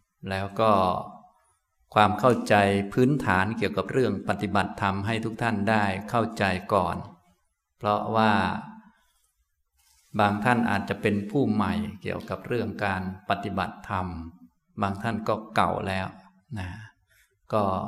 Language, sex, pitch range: Thai, male, 100-115 Hz